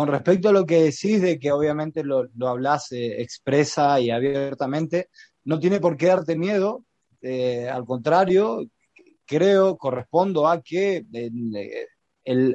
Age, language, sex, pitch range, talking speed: 20-39, Spanish, male, 130-165 Hz, 150 wpm